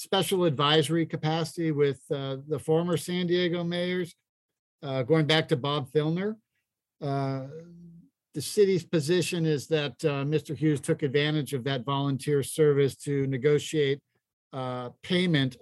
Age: 50-69